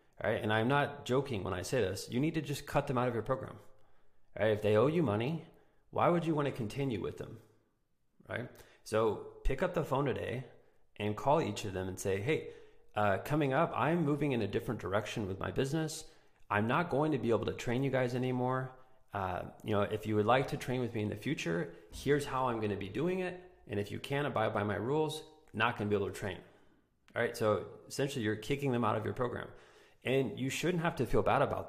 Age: 30-49